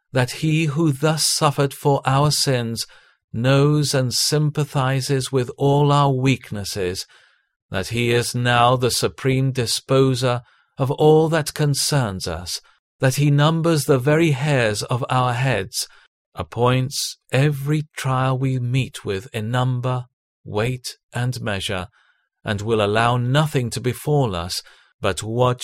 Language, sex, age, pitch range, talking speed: English, male, 40-59, 120-145 Hz, 130 wpm